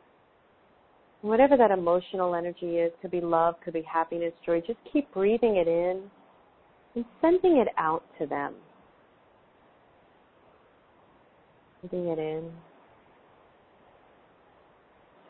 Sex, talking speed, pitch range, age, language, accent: female, 100 wpm, 170-205 Hz, 40-59, English, American